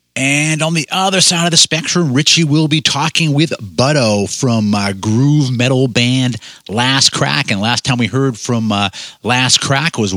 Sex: male